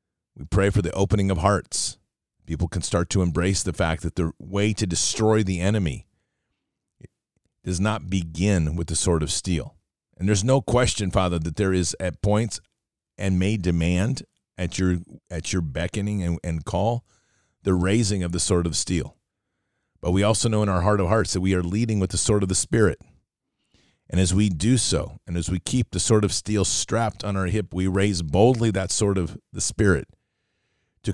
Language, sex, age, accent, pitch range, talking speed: English, male, 40-59, American, 85-105 Hz, 195 wpm